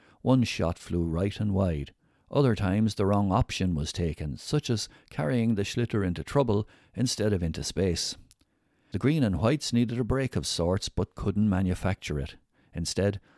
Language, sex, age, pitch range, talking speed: English, male, 60-79, 85-110 Hz, 170 wpm